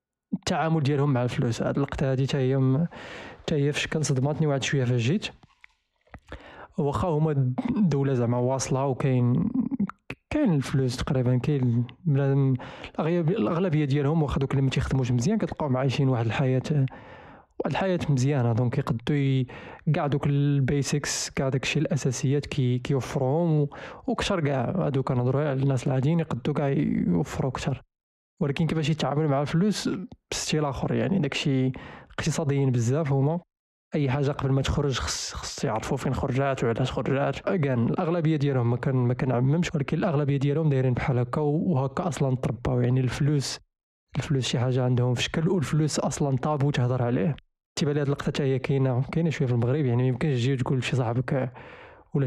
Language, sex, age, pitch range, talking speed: Arabic, male, 20-39, 130-150 Hz, 155 wpm